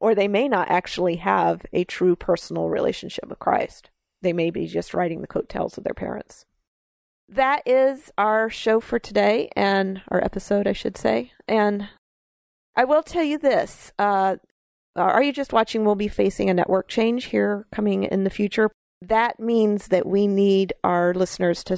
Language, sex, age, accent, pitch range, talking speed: English, female, 40-59, American, 175-205 Hz, 175 wpm